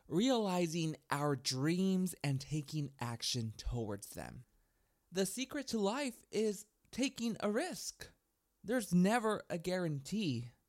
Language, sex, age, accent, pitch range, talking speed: English, male, 20-39, American, 145-205 Hz, 110 wpm